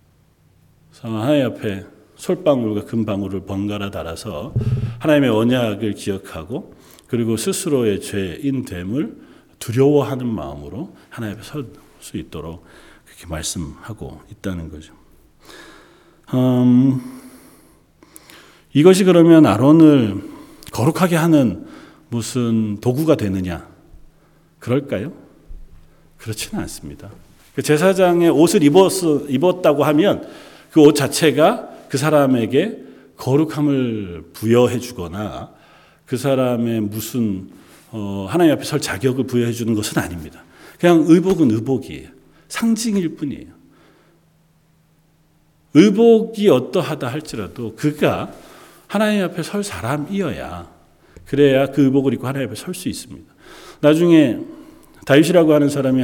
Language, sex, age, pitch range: Korean, male, 40-59, 105-155 Hz